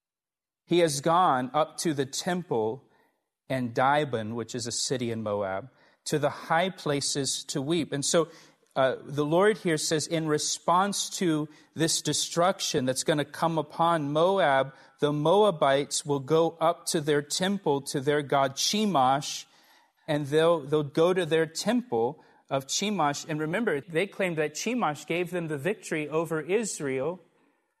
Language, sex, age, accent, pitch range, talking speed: English, male, 40-59, American, 140-170 Hz, 155 wpm